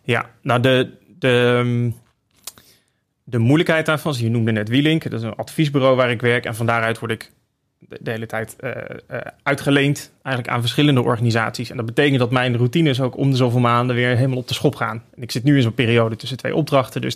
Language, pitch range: Dutch, 115-130 Hz